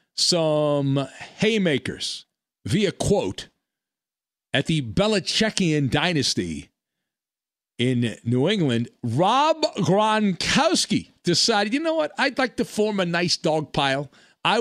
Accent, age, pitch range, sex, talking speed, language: American, 40-59, 140-205 Hz, male, 105 wpm, English